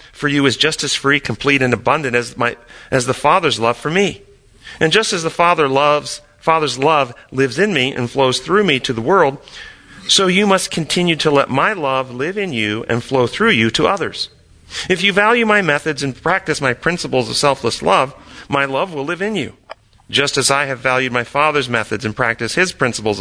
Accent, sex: American, male